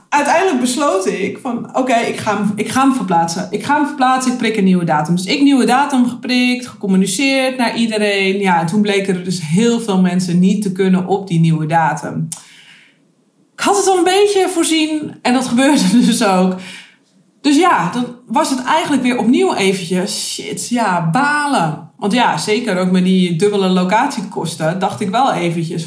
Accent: Dutch